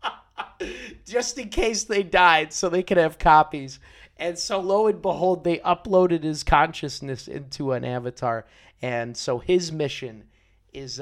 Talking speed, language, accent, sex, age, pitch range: 145 wpm, English, American, male, 30-49, 110-170 Hz